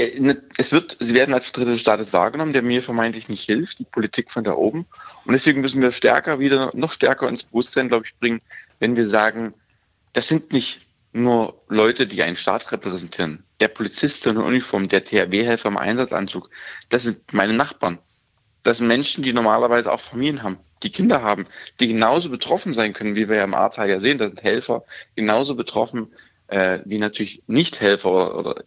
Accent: German